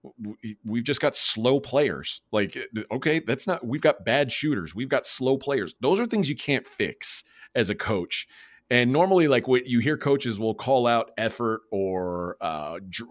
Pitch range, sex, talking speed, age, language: 105-135 Hz, male, 180 wpm, 30-49, English